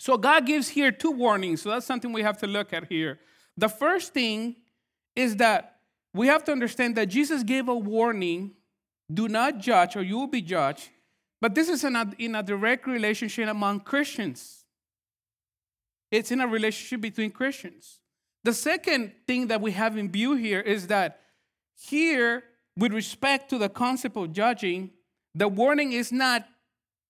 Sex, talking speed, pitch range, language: male, 170 wpm, 190-255 Hz, English